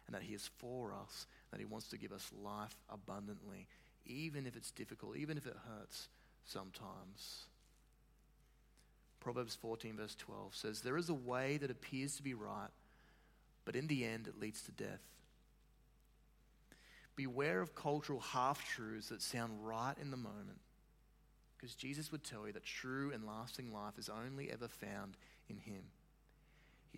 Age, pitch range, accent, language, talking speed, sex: 30-49, 115-140 Hz, Australian, English, 160 wpm, male